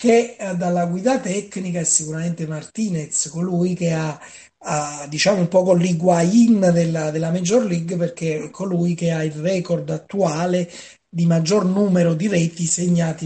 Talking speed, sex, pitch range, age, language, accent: 155 wpm, male, 165-195 Hz, 30-49, Spanish, Italian